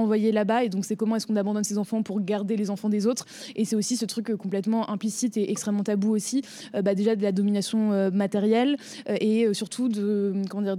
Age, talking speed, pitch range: 20-39, 240 wpm, 205-230 Hz